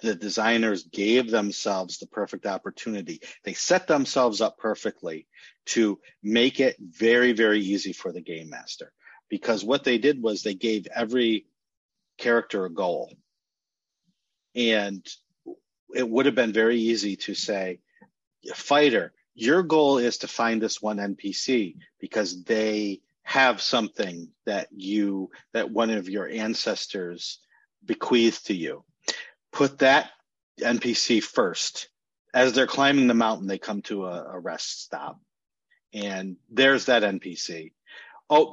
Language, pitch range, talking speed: English, 105-130 Hz, 130 wpm